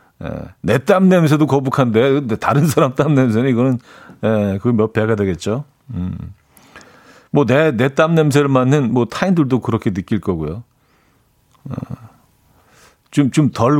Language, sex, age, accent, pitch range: Korean, male, 40-59, native, 110-150 Hz